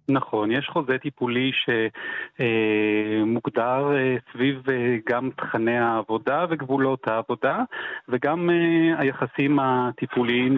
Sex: male